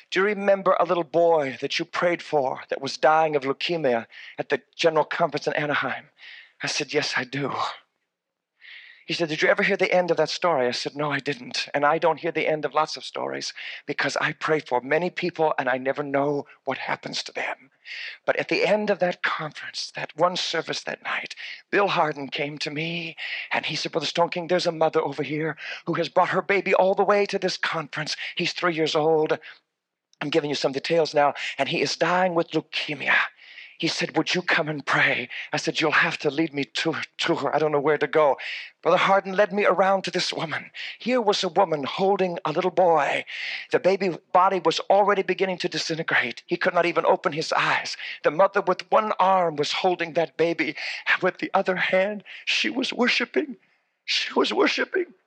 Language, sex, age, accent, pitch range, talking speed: English, male, 40-59, American, 150-185 Hz, 210 wpm